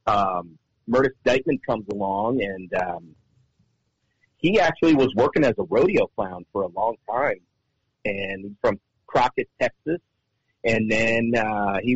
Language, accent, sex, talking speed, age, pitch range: English, American, male, 135 wpm, 40-59, 110-130 Hz